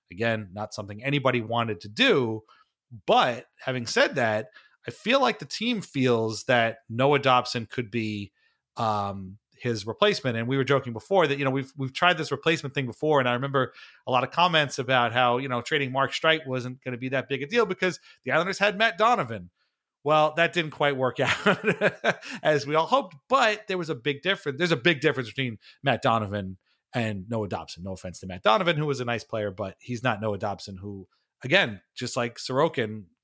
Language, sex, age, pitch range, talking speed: English, male, 30-49, 110-150 Hz, 210 wpm